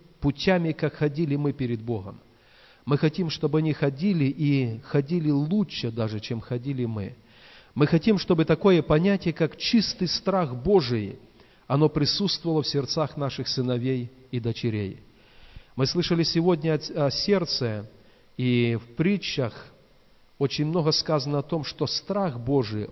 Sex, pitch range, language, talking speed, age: male, 125-165 Hz, Russian, 135 wpm, 40-59